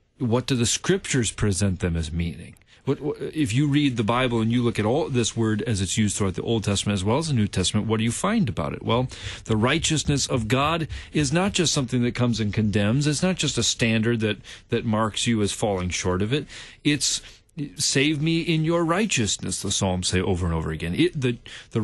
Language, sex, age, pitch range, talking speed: English, male, 40-59, 95-120 Hz, 225 wpm